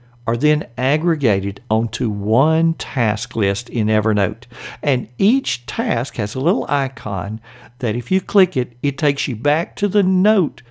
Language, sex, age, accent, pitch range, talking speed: English, male, 60-79, American, 120-155 Hz, 155 wpm